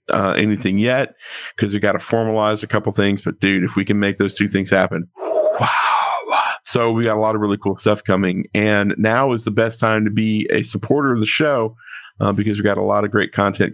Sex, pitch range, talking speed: male, 100-115 Hz, 235 wpm